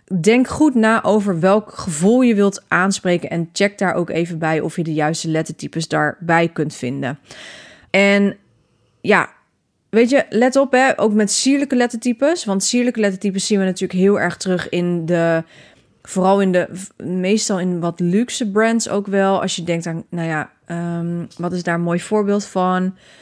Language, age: Dutch, 20-39